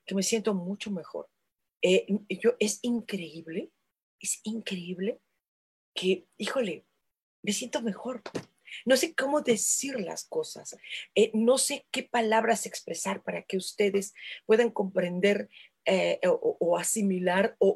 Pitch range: 185-235 Hz